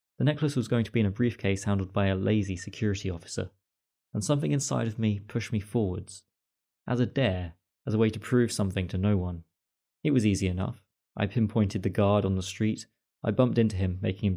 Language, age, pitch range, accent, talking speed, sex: English, 20-39, 95-110 Hz, British, 215 wpm, male